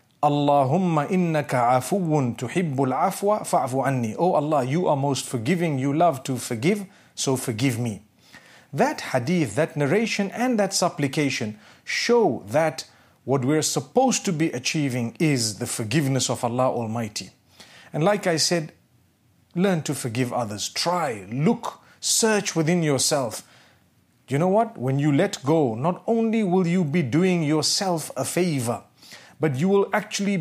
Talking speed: 140 wpm